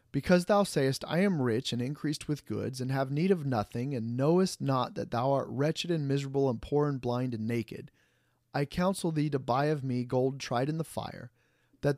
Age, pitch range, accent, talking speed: 30-49, 120-165 Hz, American, 215 wpm